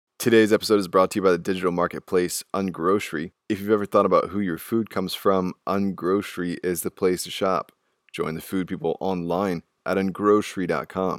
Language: English